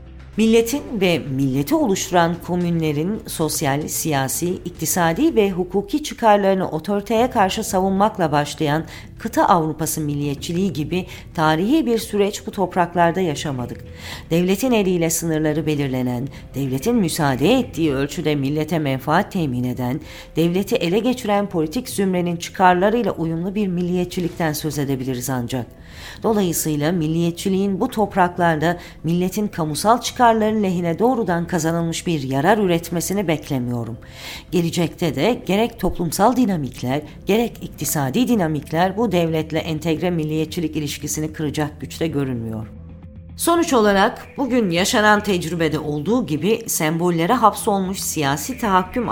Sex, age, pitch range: female, 40-59, 150-200 Hz